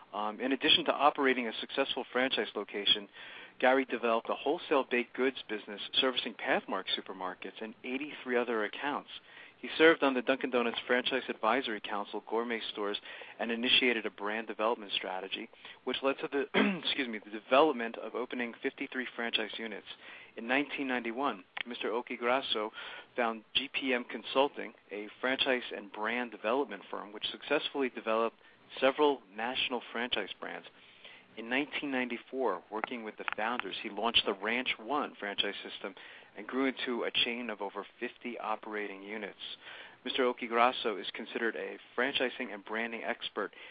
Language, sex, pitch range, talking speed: English, male, 110-135 Hz, 145 wpm